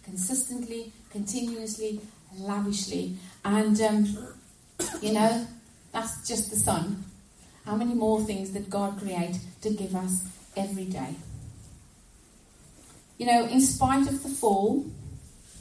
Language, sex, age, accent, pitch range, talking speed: English, female, 30-49, British, 200-240 Hz, 115 wpm